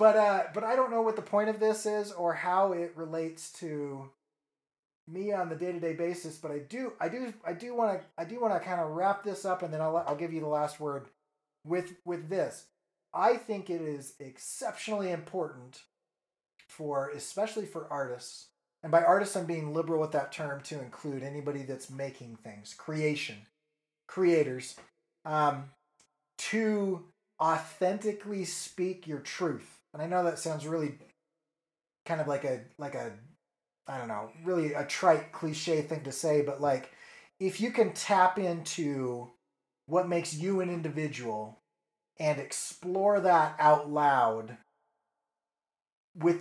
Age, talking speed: 30-49, 165 wpm